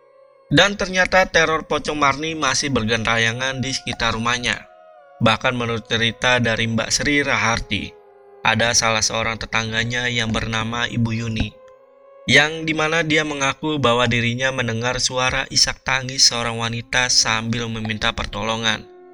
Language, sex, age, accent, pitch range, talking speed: Indonesian, male, 20-39, native, 115-145 Hz, 125 wpm